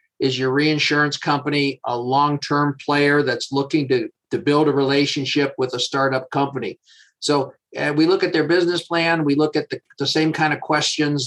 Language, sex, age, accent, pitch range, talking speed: English, male, 50-69, American, 140-155 Hz, 185 wpm